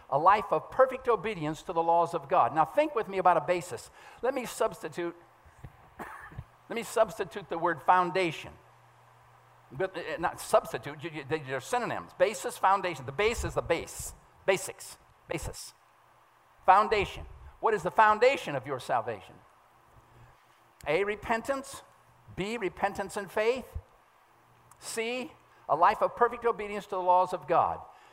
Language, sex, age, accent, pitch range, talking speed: English, male, 50-69, American, 170-225 Hz, 145 wpm